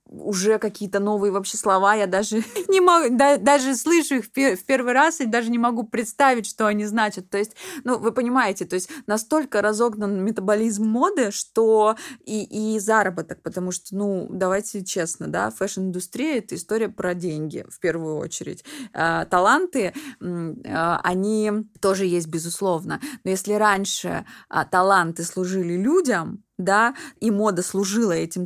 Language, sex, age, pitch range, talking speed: Russian, female, 20-39, 180-225 Hz, 145 wpm